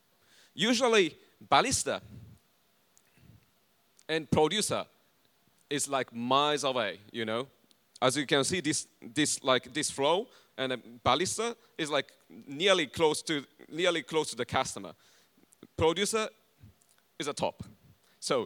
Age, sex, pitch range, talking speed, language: 30-49, male, 120-170 Hz, 115 wpm, English